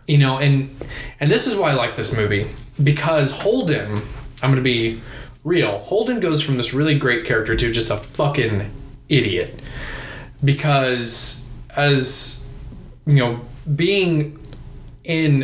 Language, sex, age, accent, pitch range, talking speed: English, male, 20-39, American, 120-140 Hz, 140 wpm